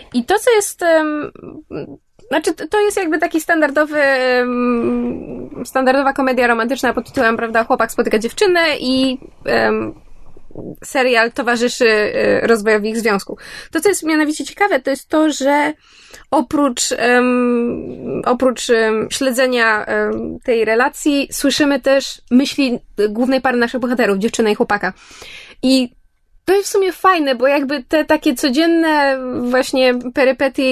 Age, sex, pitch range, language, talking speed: 20-39, female, 240-295 Hz, Polish, 120 wpm